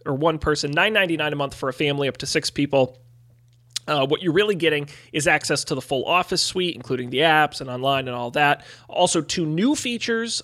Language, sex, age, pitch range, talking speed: English, male, 30-49, 130-165 Hz, 215 wpm